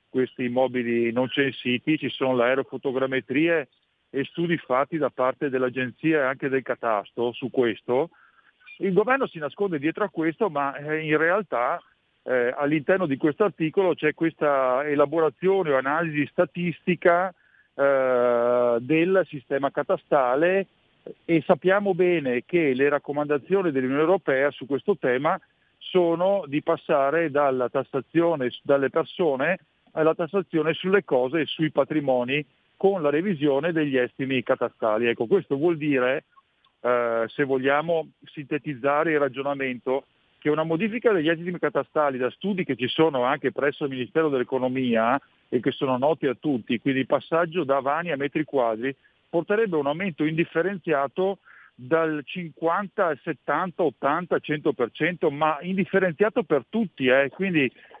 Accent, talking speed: native, 135 wpm